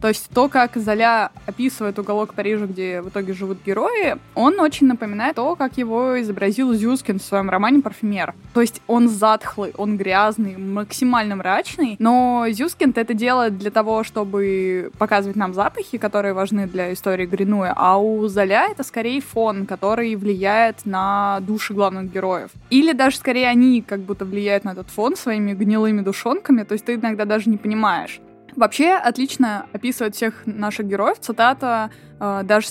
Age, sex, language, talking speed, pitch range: 20-39, female, Russian, 160 wpm, 200-240 Hz